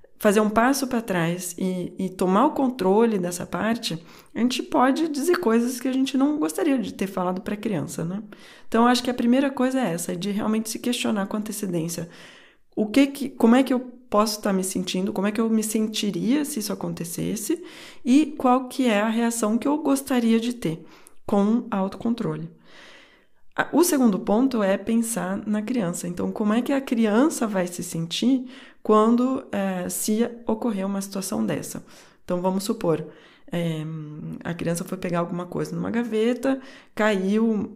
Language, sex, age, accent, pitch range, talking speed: Portuguese, female, 20-39, Brazilian, 185-250 Hz, 170 wpm